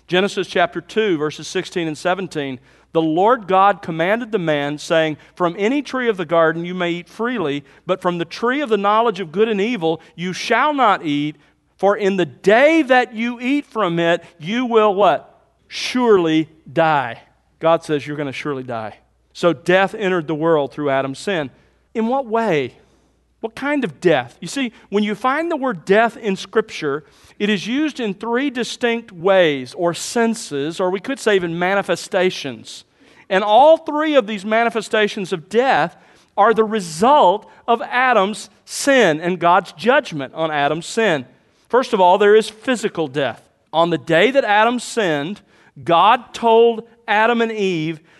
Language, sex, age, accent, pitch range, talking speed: English, male, 40-59, American, 165-225 Hz, 170 wpm